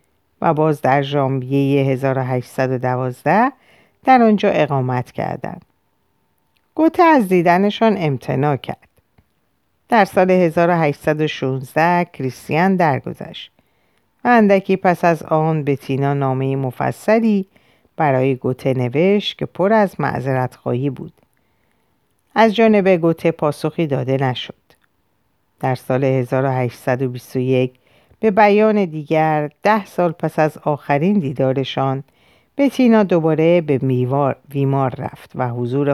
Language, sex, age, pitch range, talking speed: Persian, female, 50-69, 130-180 Hz, 105 wpm